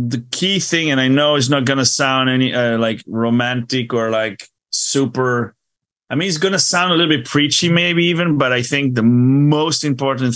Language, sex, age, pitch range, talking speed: English, male, 30-49, 115-145 Hz, 195 wpm